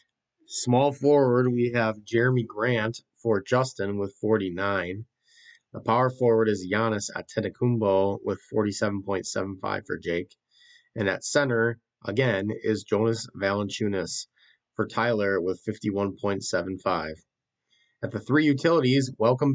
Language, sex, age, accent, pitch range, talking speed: English, male, 30-49, American, 100-120 Hz, 110 wpm